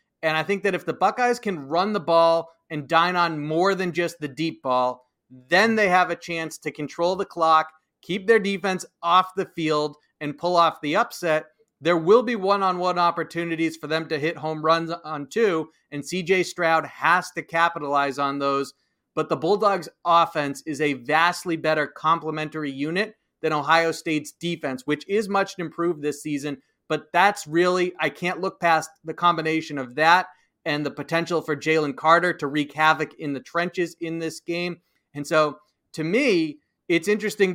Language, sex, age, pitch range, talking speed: English, male, 30-49, 155-180 Hz, 180 wpm